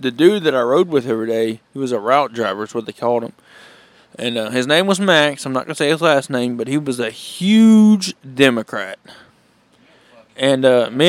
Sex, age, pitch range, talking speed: male, 20-39, 125-165 Hz, 215 wpm